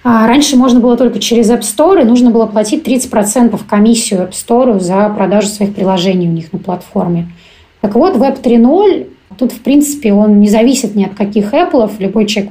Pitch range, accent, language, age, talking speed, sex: 195-235 Hz, native, Russian, 20-39, 185 wpm, female